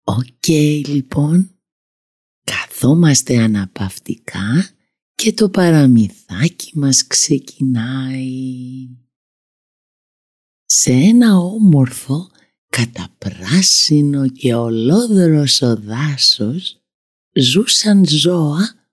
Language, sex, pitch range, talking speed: Greek, female, 125-185 Hz, 65 wpm